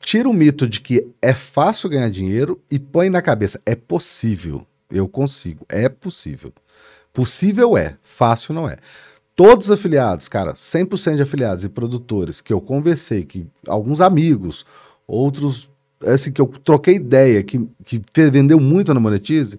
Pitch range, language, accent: 105-140 Hz, Portuguese, Brazilian